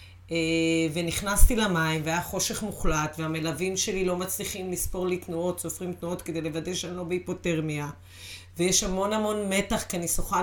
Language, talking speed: Hebrew, 150 wpm